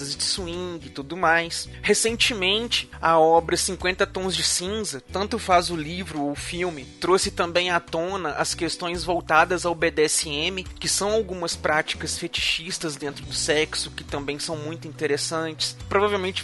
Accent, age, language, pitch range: Brazilian, 20-39, Portuguese, 160-210 Hz